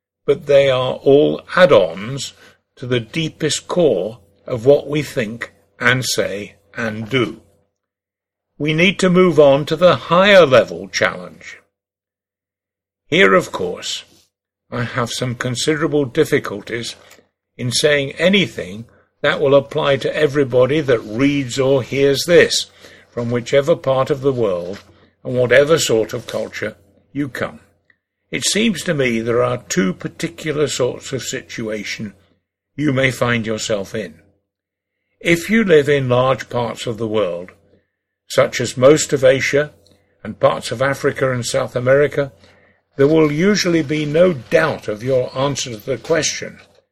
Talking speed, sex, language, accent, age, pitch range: 140 wpm, male, English, British, 60-79, 105-145 Hz